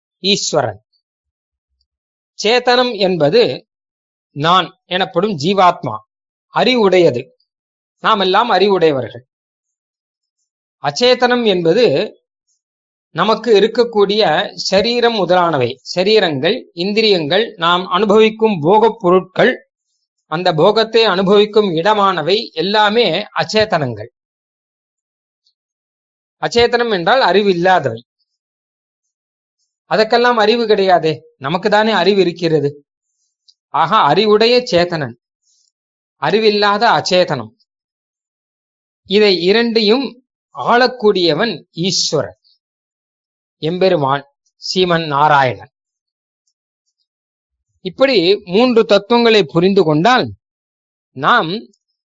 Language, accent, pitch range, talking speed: Tamil, native, 145-220 Hz, 65 wpm